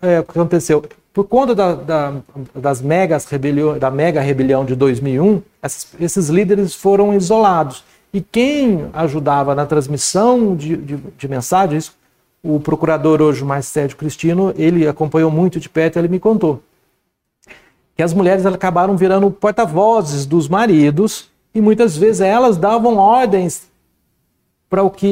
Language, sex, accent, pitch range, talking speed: Portuguese, male, Brazilian, 150-195 Hz, 140 wpm